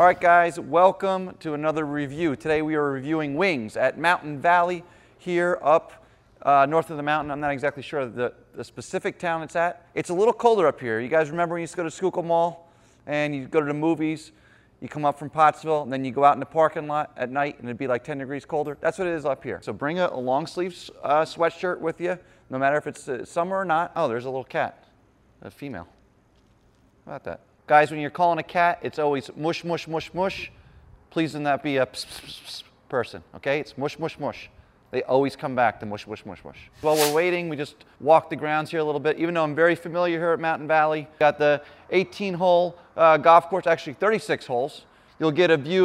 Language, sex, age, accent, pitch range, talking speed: English, male, 30-49, American, 145-170 Hz, 230 wpm